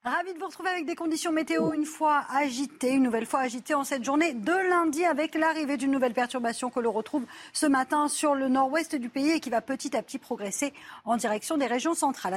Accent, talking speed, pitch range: French, 230 wpm, 230-285 Hz